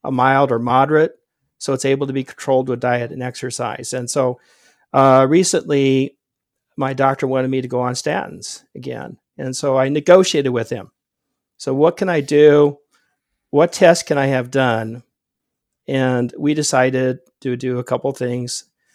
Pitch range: 125-150 Hz